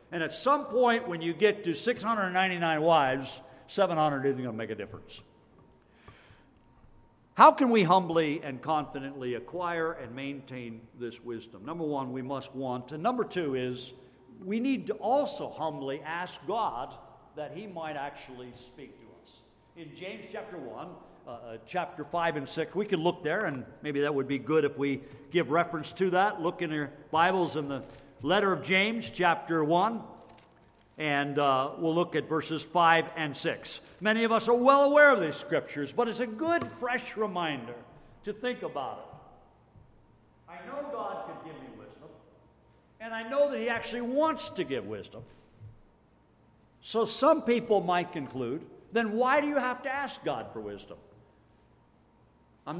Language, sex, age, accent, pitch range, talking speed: English, male, 50-69, American, 135-210 Hz, 165 wpm